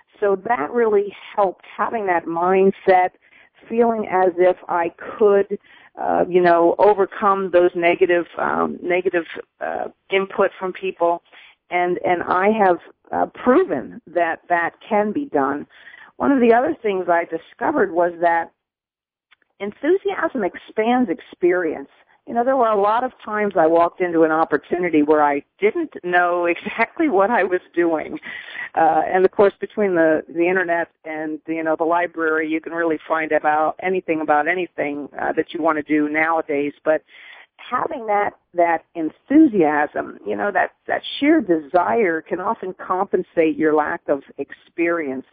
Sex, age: female, 50-69